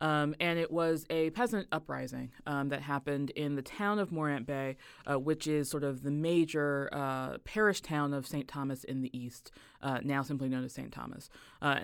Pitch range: 135-165 Hz